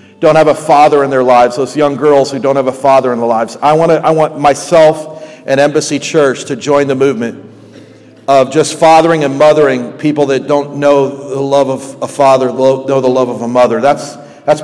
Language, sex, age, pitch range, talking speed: English, male, 50-69, 125-150 Hz, 215 wpm